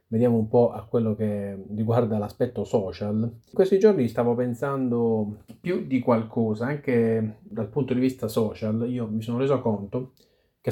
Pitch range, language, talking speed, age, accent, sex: 110-125 Hz, Italian, 160 wpm, 30-49, native, male